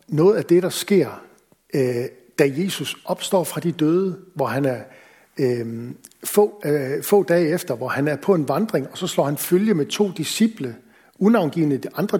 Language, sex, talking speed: Danish, male, 165 wpm